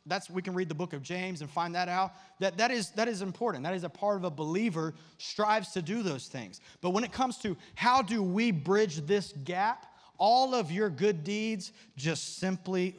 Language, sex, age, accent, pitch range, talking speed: English, male, 30-49, American, 145-200 Hz, 220 wpm